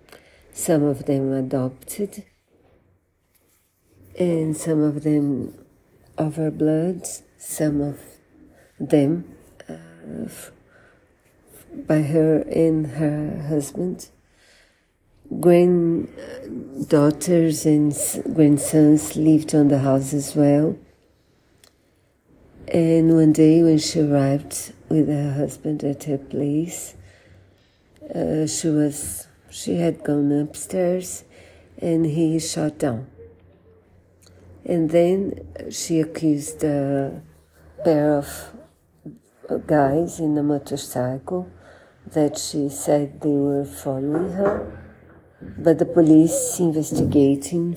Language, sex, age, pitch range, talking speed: Portuguese, female, 50-69, 135-160 Hz, 95 wpm